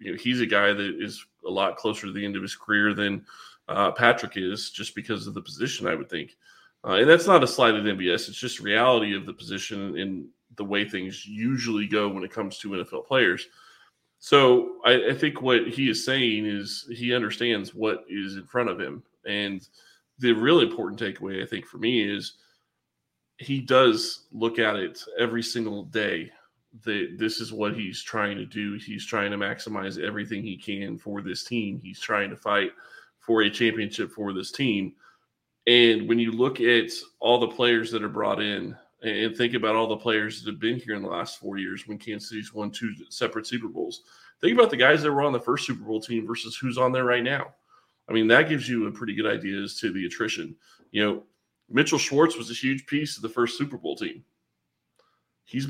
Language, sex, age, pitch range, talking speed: English, male, 20-39, 105-125 Hz, 215 wpm